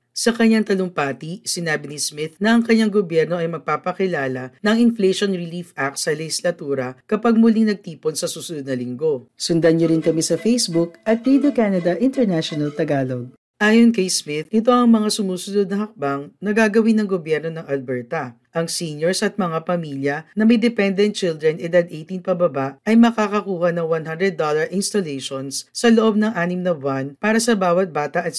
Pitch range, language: 150-205 Hz, Filipino